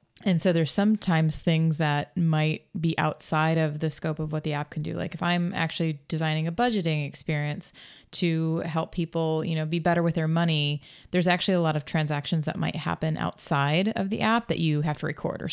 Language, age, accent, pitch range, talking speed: English, 20-39, American, 155-175 Hz, 215 wpm